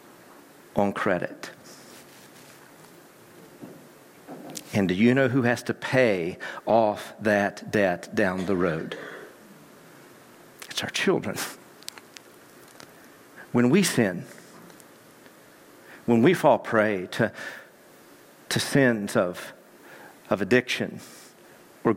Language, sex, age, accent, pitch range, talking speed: English, male, 50-69, American, 105-120 Hz, 90 wpm